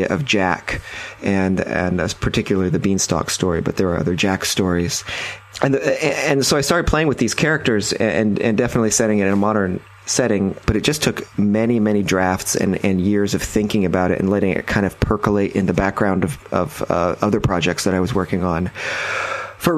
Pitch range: 95-110 Hz